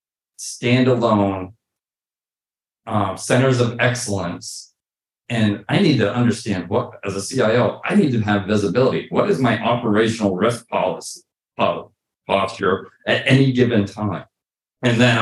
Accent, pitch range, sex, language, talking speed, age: American, 100-125 Hz, male, English, 125 wpm, 40-59